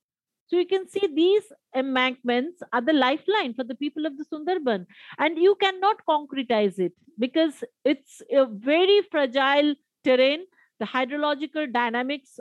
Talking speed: 140 wpm